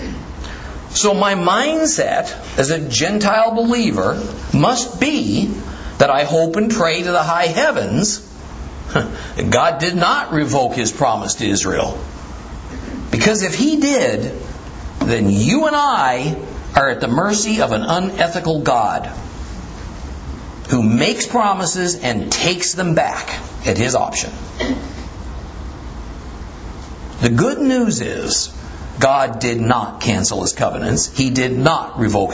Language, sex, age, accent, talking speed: English, male, 50-69, American, 125 wpm